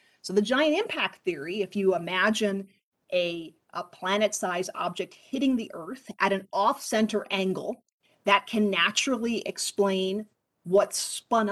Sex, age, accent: female, 40-59, American